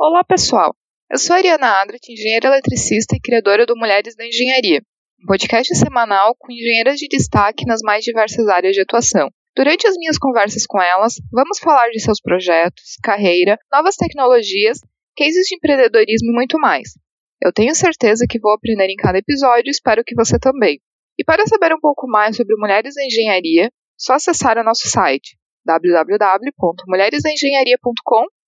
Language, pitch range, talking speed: Portuguese, 220-285 Hz, 165 wpm